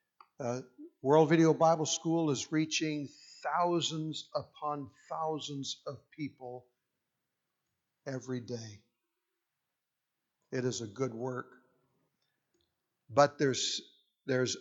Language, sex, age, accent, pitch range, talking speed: English, male, 60-79, American, 125-150 Hz, 90 wpm